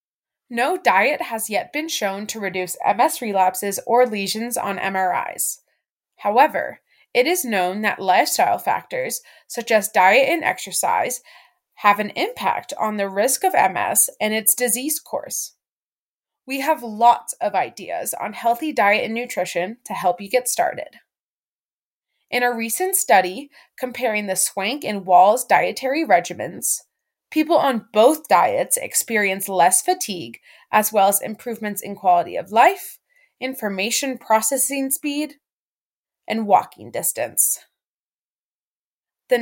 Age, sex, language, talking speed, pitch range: 20-39, female, English, 130 wpm, 205-290 Hz